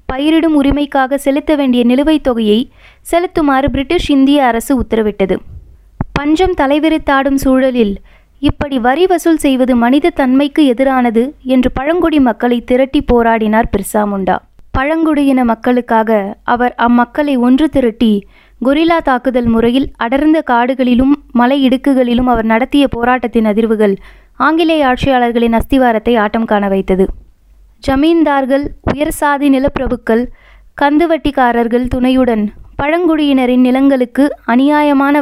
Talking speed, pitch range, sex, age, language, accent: 100 wpm, 235-290 Hz, female, 20-39, Tamil, native